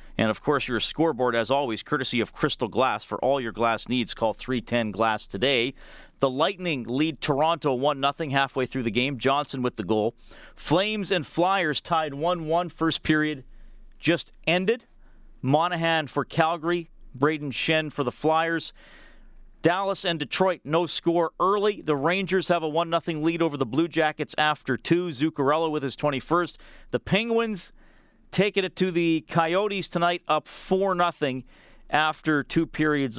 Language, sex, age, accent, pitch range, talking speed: English, male, 40-59, American, 120-165 Hz, 155 wpm